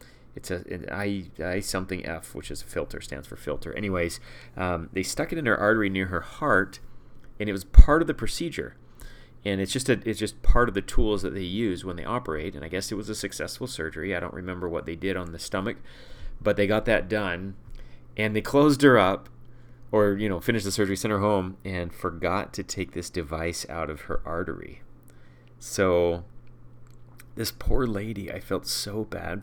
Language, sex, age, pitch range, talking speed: English, male, 30-49, 85-105 Hz, 205 wpm